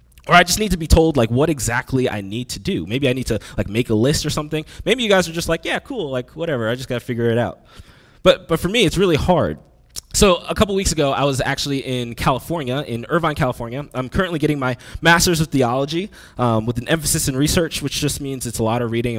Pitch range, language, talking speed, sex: 120-180 Hz, English, 255 wpm, male